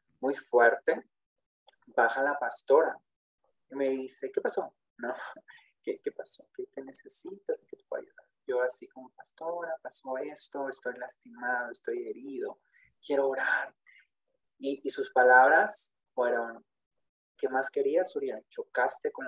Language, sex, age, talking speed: Spanish, male, 30-49, 135 wpm